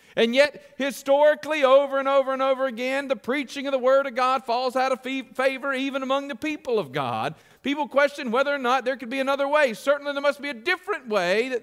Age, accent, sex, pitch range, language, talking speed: 50-69, American, male, 195-265 Hz, English, 225 wpm